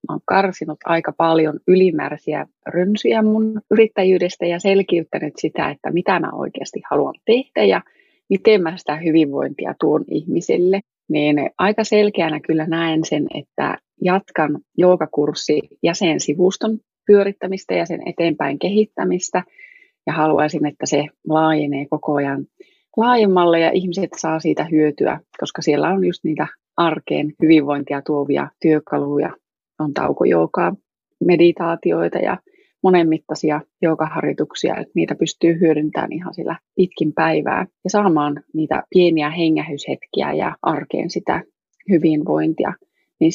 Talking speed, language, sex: 120 wpm, Finnish, female